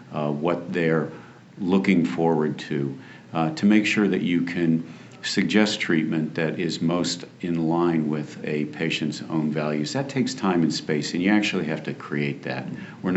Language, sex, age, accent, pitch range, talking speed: English, male, 50-69, American, 75-85 Hz, 175 wpm